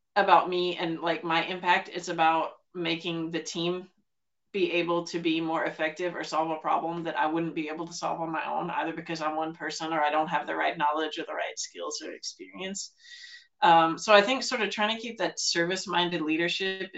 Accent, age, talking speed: American, 30-49, 215 wpm